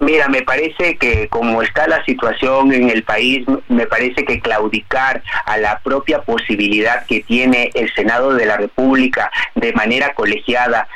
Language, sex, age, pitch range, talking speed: Spanish, male, 30-49, 120-135 Hz, 160 wpm